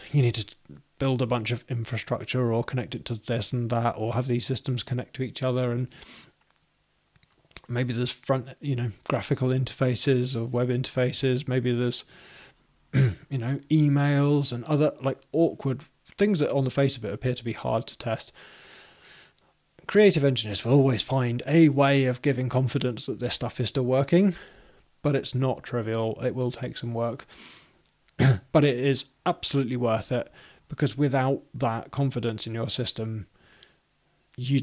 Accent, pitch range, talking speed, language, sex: British, 115-135 Hz, 165 wpm, English, male